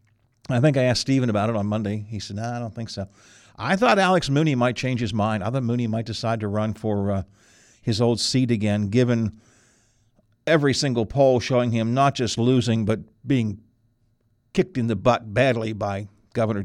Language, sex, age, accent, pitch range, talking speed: English, male, 50-69, American, 110-140 Hz, 200 wpm